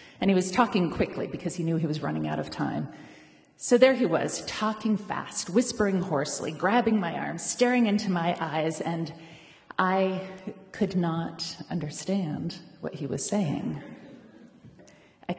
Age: 30-49